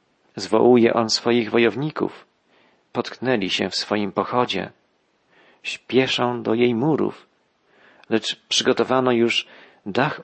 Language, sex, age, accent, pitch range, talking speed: Polish, male, 40-59, native, 110-135 Hz, 100 wpm